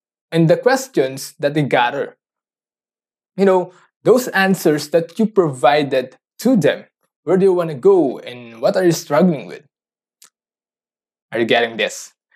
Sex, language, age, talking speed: male, English, 20-39, 150 wpm